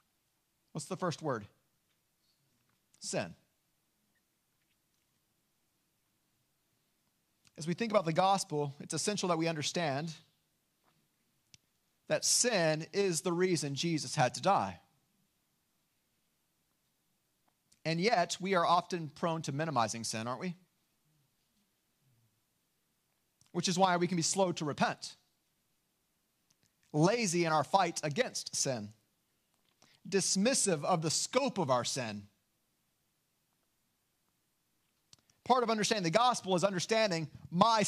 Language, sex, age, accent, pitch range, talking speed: English, male, 40-59, American, 155-210 Hz, 105 wpm